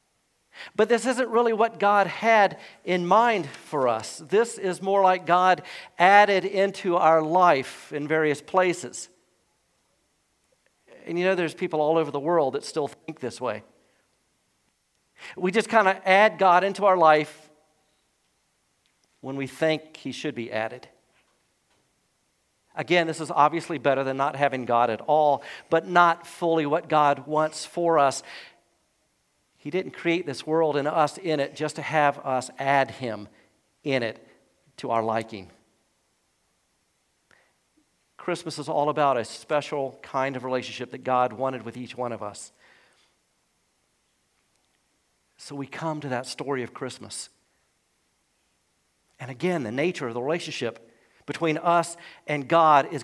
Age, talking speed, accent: 50-69, 145 wpm, American